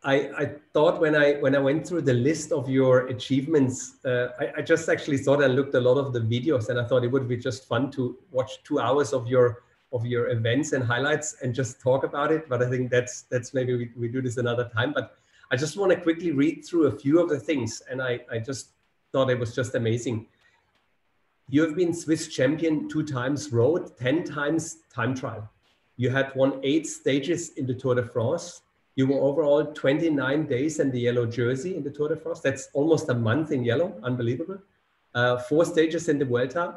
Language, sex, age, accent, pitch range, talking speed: English, male, 30-49, German, 125-155 Hz, 220 wpm